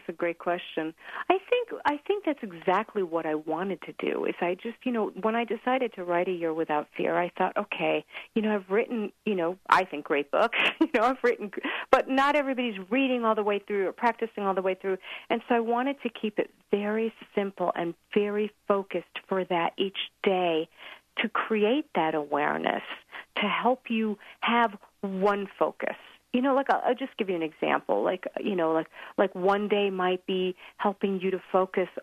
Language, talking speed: English, 205 wpm